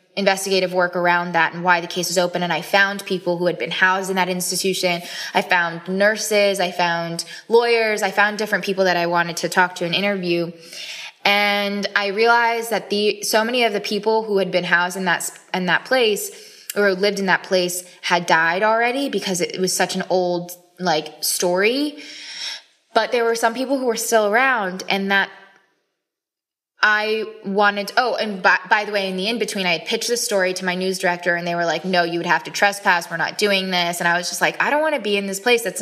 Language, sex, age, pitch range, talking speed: English, female, 10-29, 175-220 Hz, 225 wpm